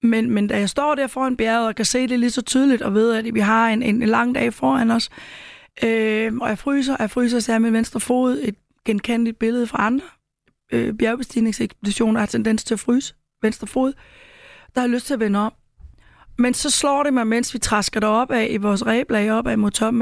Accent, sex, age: native, female, 30-49